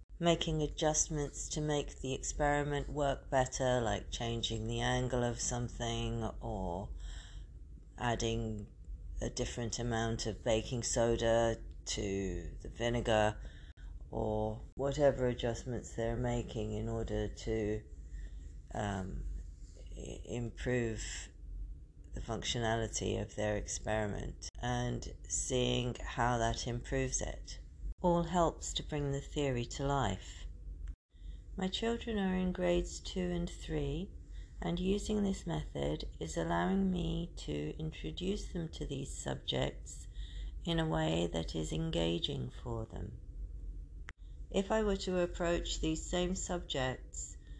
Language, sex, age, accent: English, female, 40-59, British